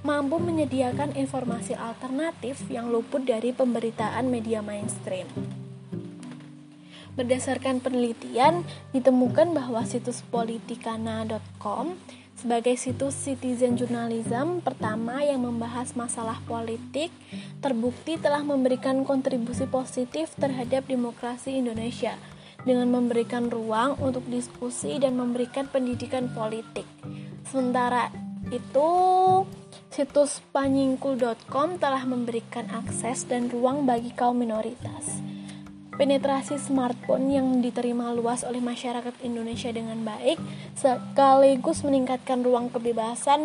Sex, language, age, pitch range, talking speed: female, Indonesian, 20-39, 230-270 Hz, 95 wpm